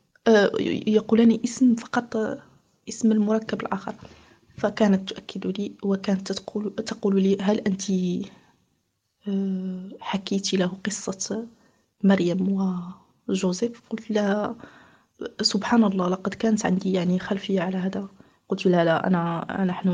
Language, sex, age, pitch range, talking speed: Arabic, female, 20-39, 195-225 Hz, 110 wpm